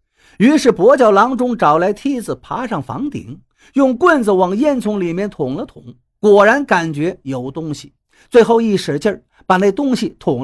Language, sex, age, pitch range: Chinese, male, 50-69, 155-260 Hz